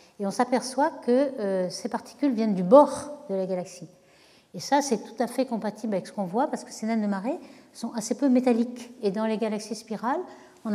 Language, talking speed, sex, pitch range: French, 220 wpm, female, 190-250 Hz